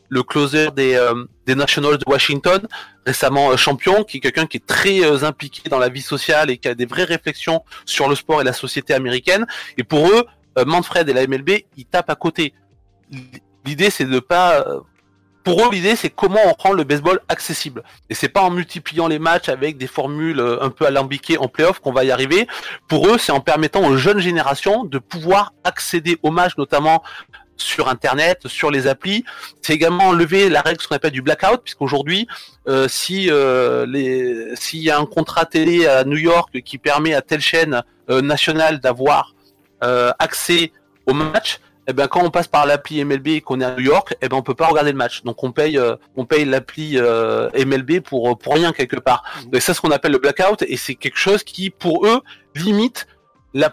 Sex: male